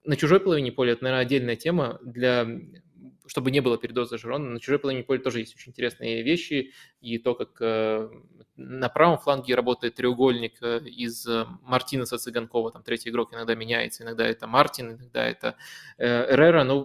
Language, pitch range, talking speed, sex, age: Russian, 120-145 Hz, 180 wpm, male, 20-39